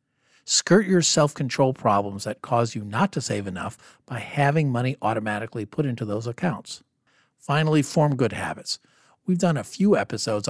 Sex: male